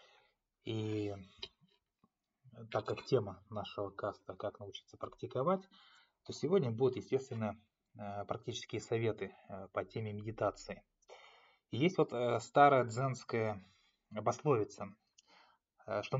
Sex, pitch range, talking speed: male, 110-135 Hz, 90 wpm